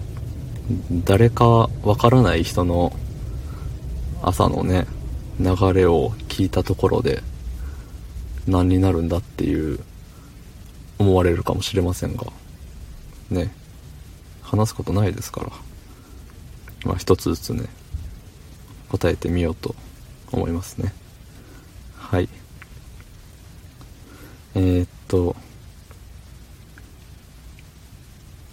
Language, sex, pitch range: Japanese, male, 85-100 Hz